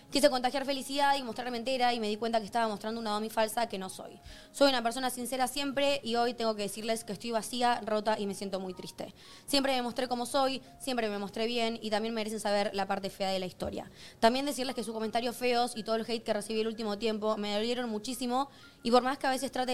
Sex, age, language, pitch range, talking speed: female, 20-39, Spanish, 210-250 Hz, 250 wpm